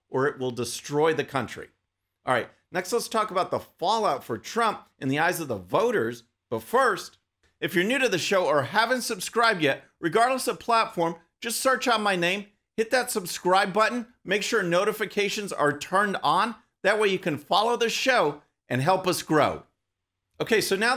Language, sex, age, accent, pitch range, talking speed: English, male, 40-59, American, 150-220 Hz, 190 wpm